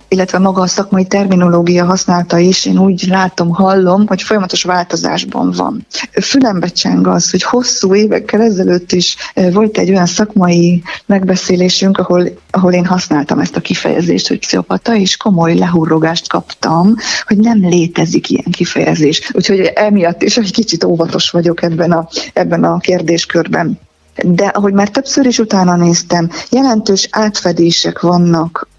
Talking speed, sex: 140 wpm, female